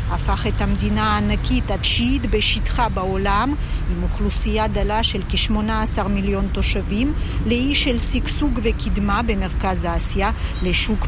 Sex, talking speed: female, 115 wpm